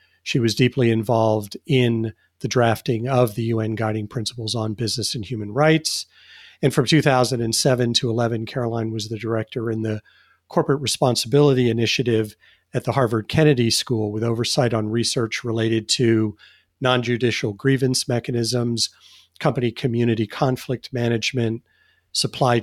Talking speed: 135 wpm